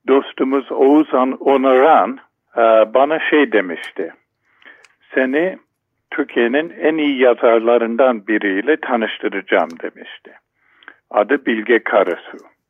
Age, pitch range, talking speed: 50-69, 120-160 Hz, 80 wpm